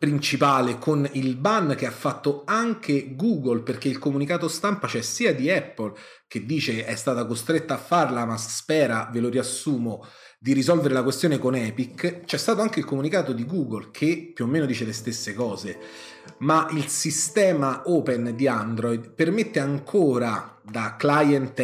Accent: native